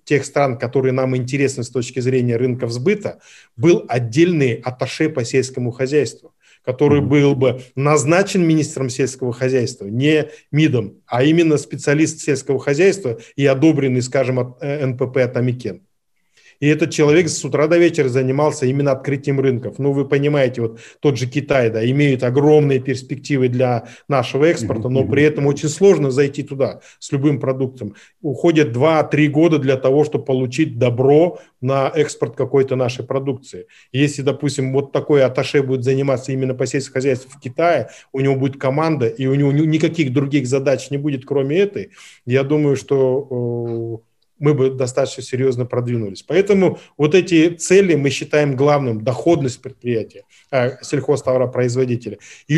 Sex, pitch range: male, 130-155 Hz